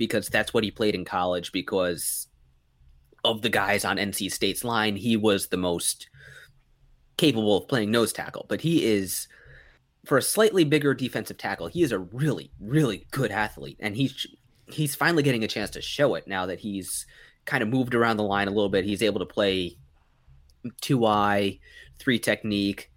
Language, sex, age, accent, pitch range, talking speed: English, male, 20-39, American, 100-130 Hz, 180 wpm